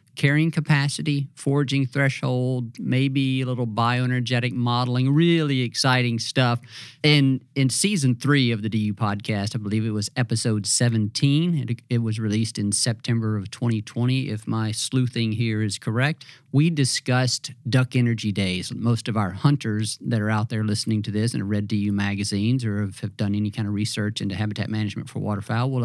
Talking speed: 165 wpm